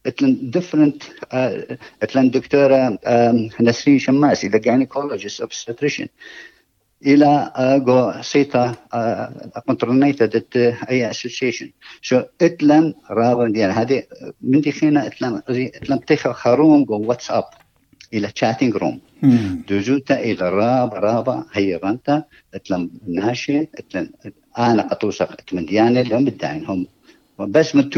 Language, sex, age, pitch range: English, male, 50-69, 115-140 Hz